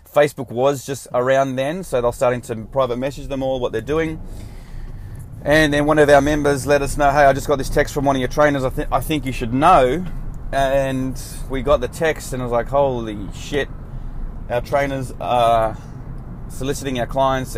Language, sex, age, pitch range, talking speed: English, male, 20-39, 120-140 Hz, 205 wpm